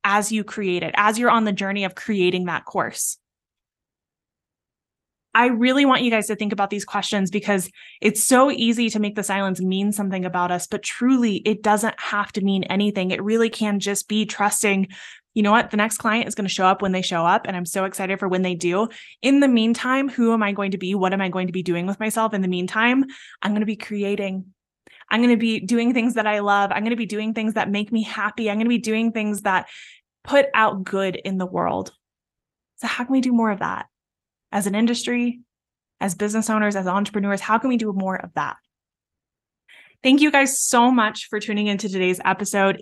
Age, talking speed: 20-39, 230 wpm